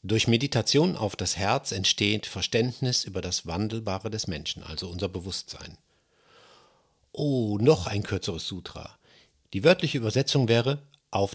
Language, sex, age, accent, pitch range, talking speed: German, male, 50-69, German, 95-120 Hz, 130 wpm